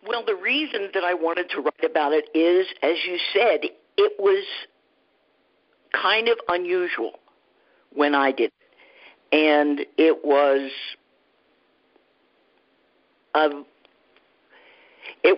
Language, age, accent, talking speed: English, 50-69, American, 100 wpm